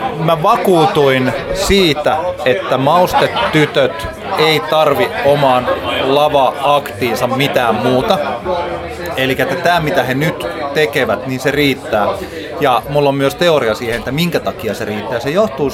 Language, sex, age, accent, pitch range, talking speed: Finnish, male, 30-49, native, 120-155 Hz, 130 wpm